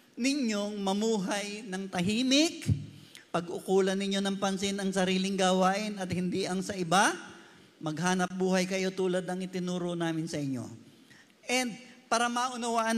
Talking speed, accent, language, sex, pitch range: 130 wpm, native, Filipino, male, 170-220 Hz